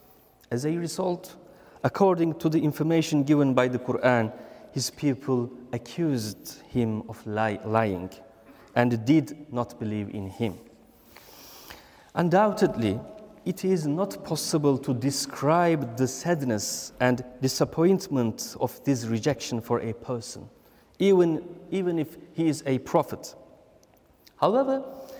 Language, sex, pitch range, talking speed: English, male, 120-170 Hz, 115 wpm